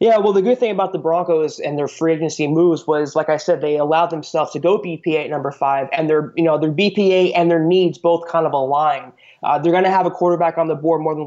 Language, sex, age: English, male, 20-39